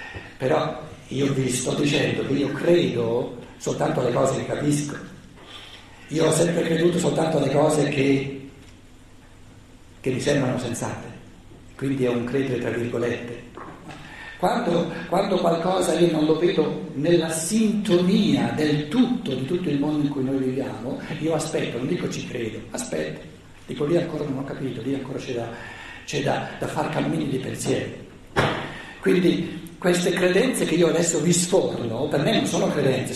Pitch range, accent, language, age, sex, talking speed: 135-195 Hz, native, Italian, 60-79, male, 155 wpm